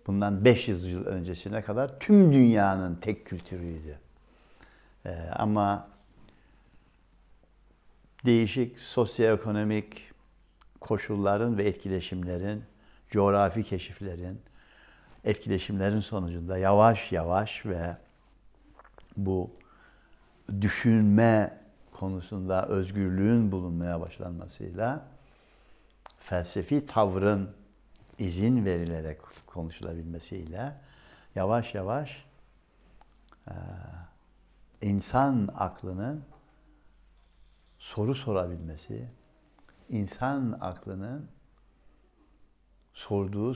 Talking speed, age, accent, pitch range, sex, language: 60 wpm, 60-79, native, 90-115 Hz, male, Turkish